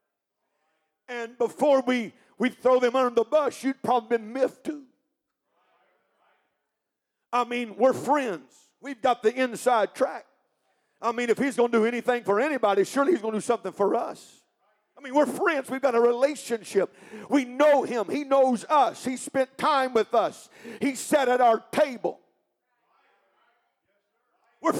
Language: English